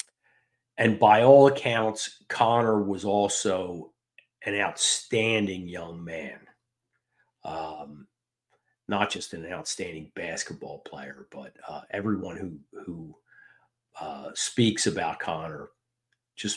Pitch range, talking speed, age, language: 100-120 Hz, 100 wpm, 50-69, English